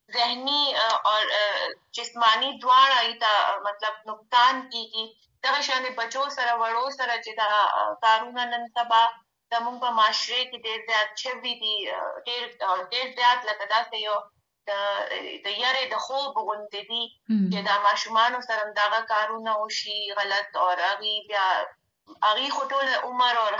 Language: Urdu